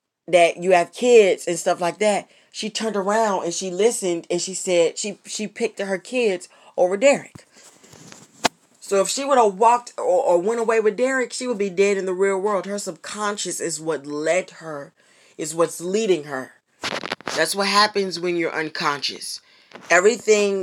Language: English